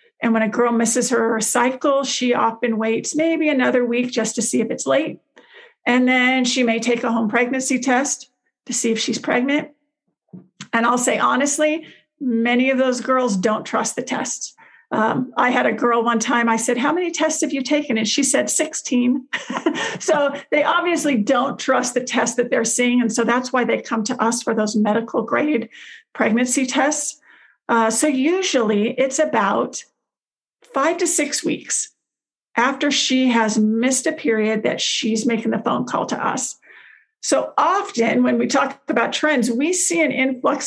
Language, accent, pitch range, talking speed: English, American, 230-290 Hz, 180 wpm